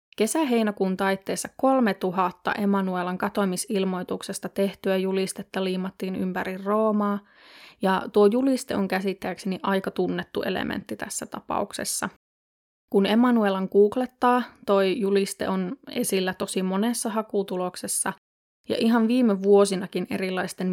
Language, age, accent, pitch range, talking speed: Finnish, 20-39, native, 190-225 Hz, 100 wpm